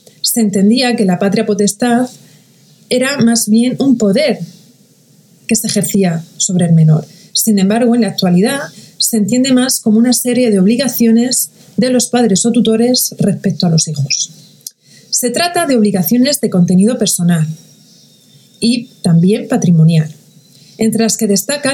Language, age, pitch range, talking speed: Spanish, 40-59, 180-230 Hz, 145 wpm